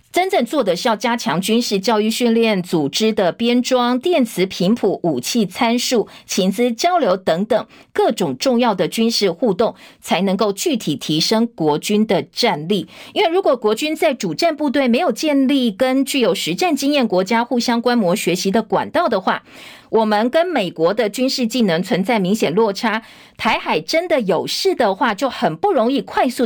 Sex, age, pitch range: female, 50-69, 200-270 Hz